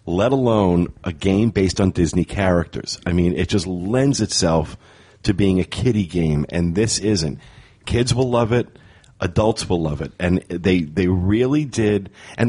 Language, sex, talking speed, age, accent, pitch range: English, male, 175 wpm, 40-59, American, 90-115 Hz